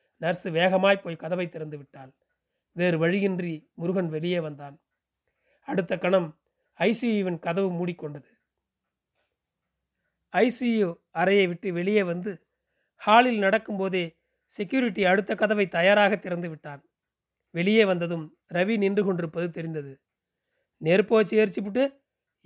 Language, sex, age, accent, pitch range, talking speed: Tamil, male, 40-59, native, 170-215 Hz, 105 wpm